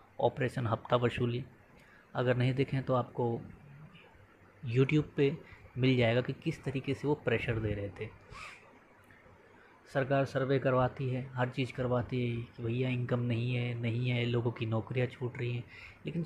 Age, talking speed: 20-39, 160 wpm